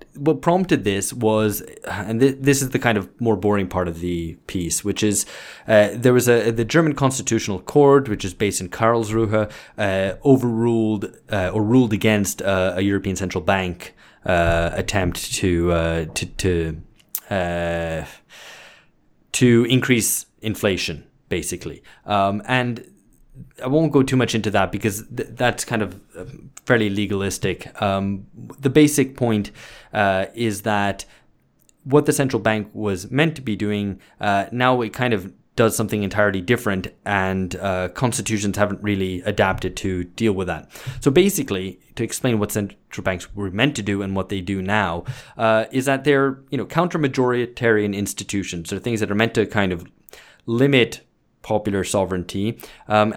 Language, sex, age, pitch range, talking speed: English, male, 20-39, 95-120 Hz, 160 wpm